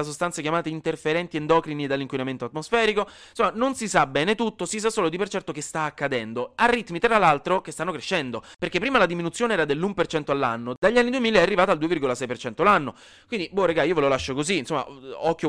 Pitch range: 130-205 Hz